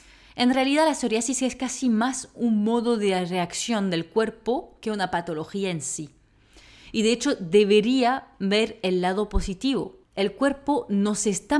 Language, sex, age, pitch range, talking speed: Spanish, female, 30-49, 170-235 Hz, 155 wpm